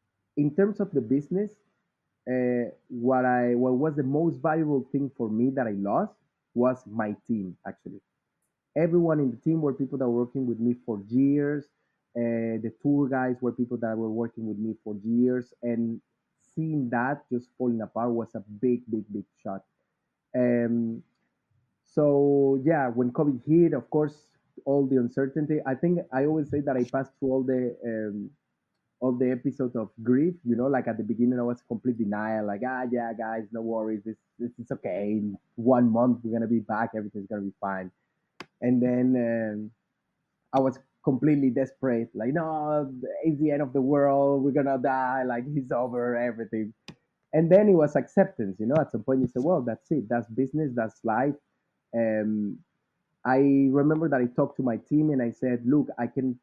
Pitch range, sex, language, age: 115-140 Hz, male, English, 30-49